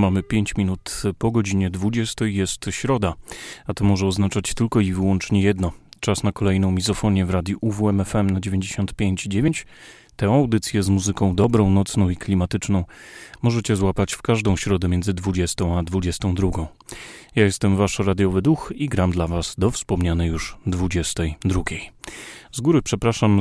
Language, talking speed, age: Polish, 150 wpm, 30-49